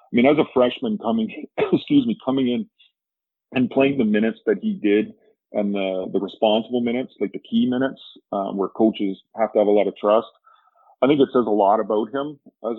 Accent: American